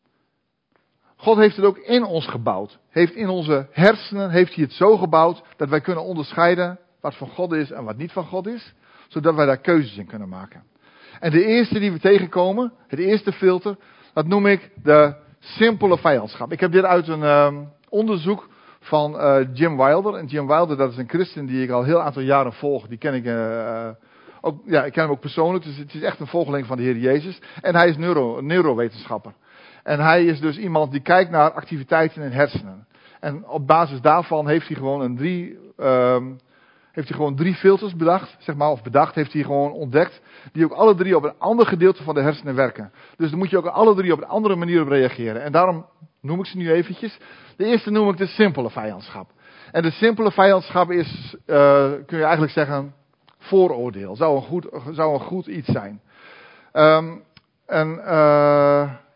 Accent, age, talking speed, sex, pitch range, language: Dutch, 50-69, 205 wpm, male, 140-185 Hz, Dutch